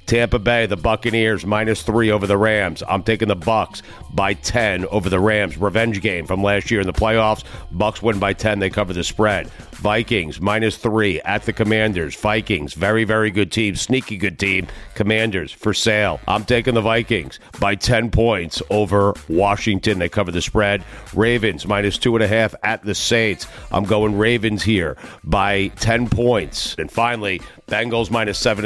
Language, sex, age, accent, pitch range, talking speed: English, male, 50-69, American, 100-115 Hz, 180 wpm